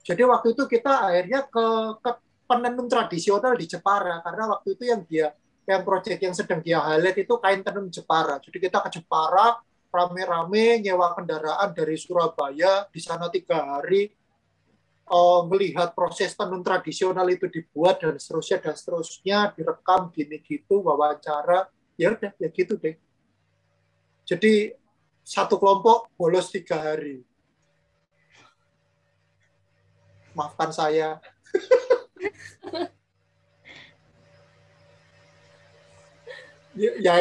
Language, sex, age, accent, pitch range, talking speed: Indonesian, male, 30-49, native, 155-215 Hz, 110 wpm